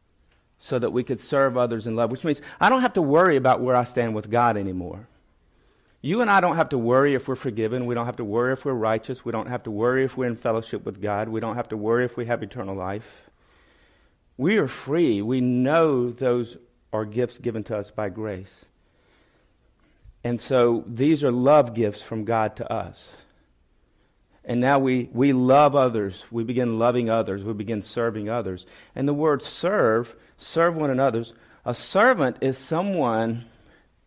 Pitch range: 110-135 Hz